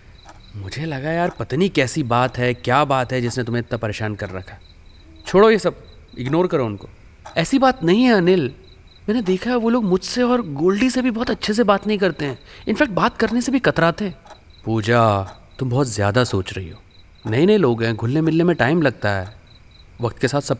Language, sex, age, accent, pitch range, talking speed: Hindi, male, 30-49, native, 95-130 Hz, 210 wpm